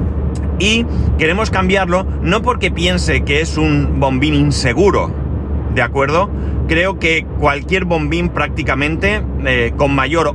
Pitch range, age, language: 65-90 Hz, 30-49, Spanish